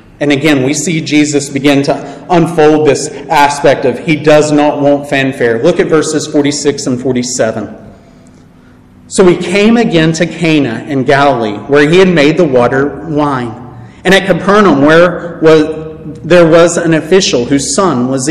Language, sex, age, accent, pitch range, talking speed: English, male, 40-59, American, 140-180 Hz, 160 wpm